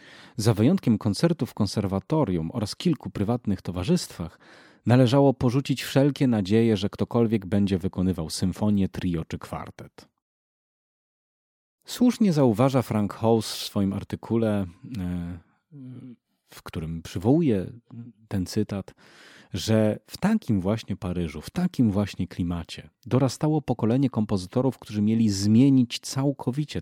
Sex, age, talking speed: male, 40-59, 110 wpm